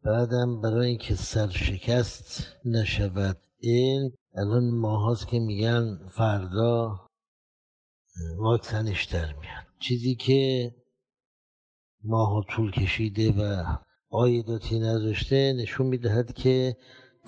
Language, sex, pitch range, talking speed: Persian, male, 100-120 Hz, 85 wpm